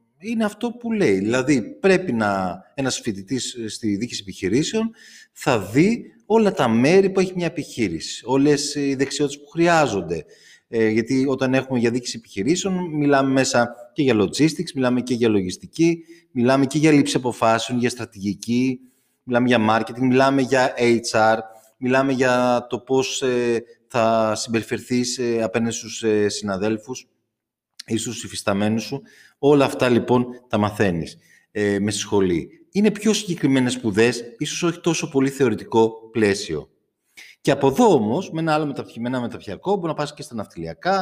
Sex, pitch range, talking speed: male, 115-150 Hz, 150 wpm